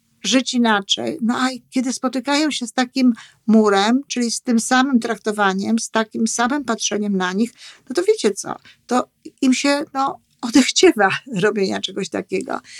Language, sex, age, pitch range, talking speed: Polish, female, 50-69, 205-260 Hz, 150 wpm